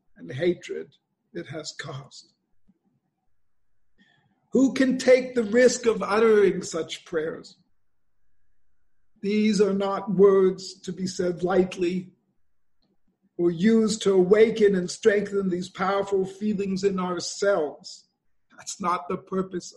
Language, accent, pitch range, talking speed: English, American, 175-205 Hz, 110 wpm